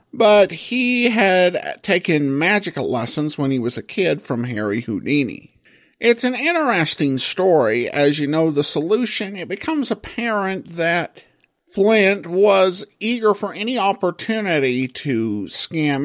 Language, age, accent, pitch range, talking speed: English, 50-69, American, 130-190 Hz, 130 wpm